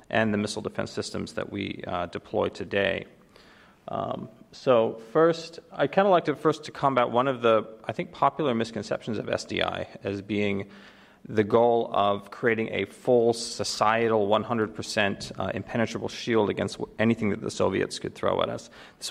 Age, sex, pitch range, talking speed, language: 40-59, male, 110-135 Hz, 165 wpm, English